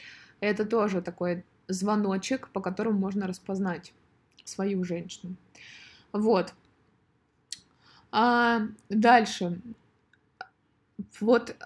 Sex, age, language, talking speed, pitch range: female, 20-39, Russian, 70 wpm, 190-240 Hz